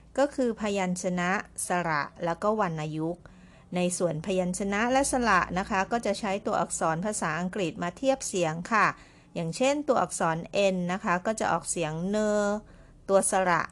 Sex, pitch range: female, 165-205 Hz